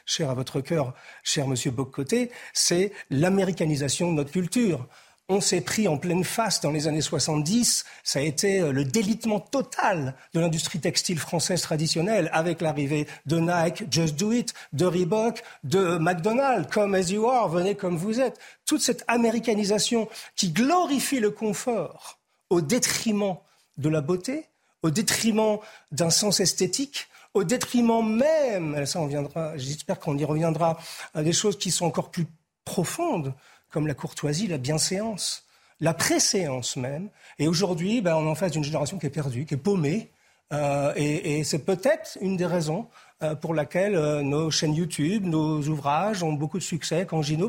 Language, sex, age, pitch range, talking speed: French, male, 50-69, 155-215 Hz, 170 wpm